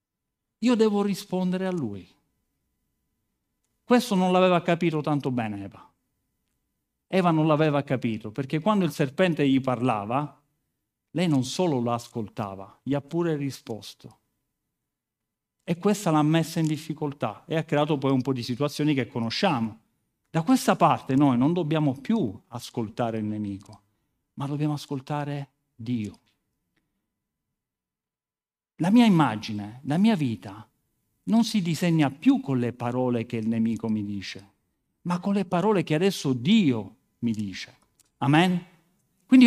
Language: Italian